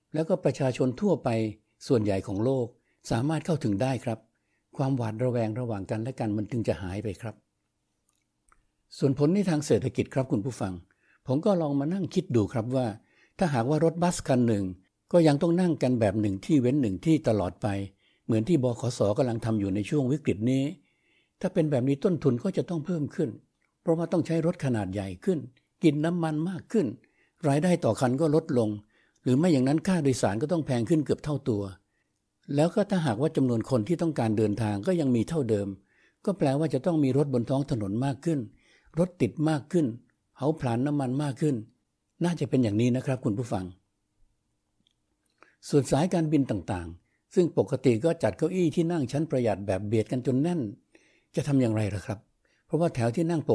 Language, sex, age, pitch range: Thai, male, 60-79, 110-155 Hz